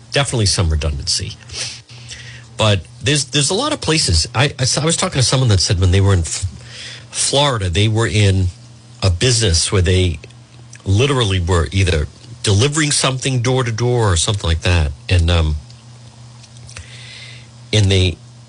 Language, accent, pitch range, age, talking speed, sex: English, American, 95-120 Hz, 50-69, 155 wpm, male